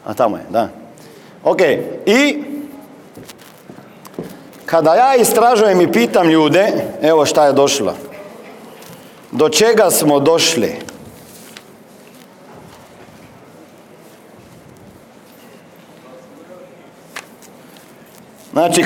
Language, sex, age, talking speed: Croatian, male, 50-69, 65 wpm